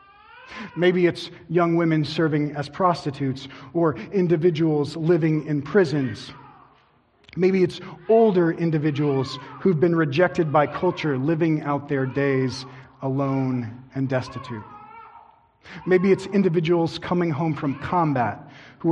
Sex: male